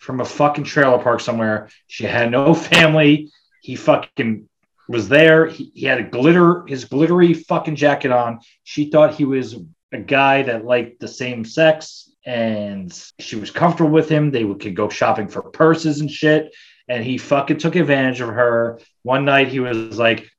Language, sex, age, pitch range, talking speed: English, male, 30-49, 110-155 Hz, 180 wpm